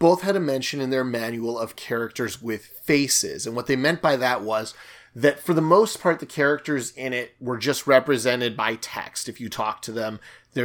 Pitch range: 115-145 Hz